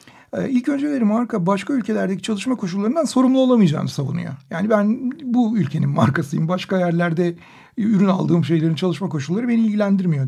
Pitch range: 175-245 Hz